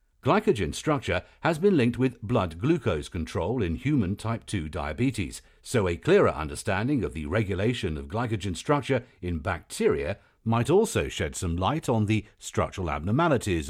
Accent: British